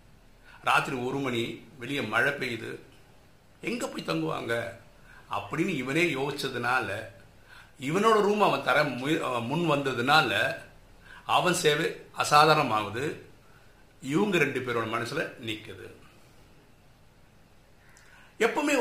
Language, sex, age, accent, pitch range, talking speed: Tamil, male, 50-69, native, 125-185 Hz, 90 wpm